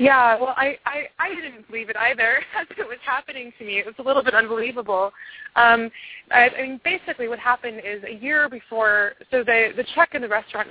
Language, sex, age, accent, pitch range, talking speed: English, female, 20-39, American, 175-230 Hz, 220 wpm